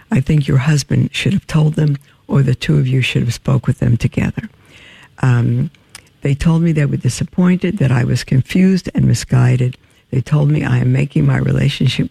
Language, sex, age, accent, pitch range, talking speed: English, female, 60-79, American, 125-150 Hz, 200 wpm